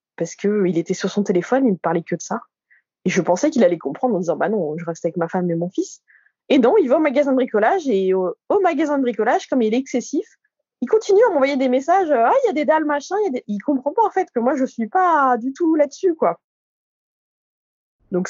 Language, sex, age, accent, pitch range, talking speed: French, female, 20-39, French, 185-275 Hz, 260 wpm